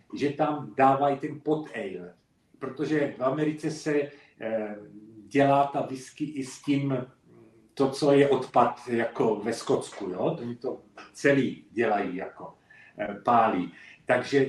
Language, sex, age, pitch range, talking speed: Czech, male, 50-69, 125-155 Hz, 125 wpm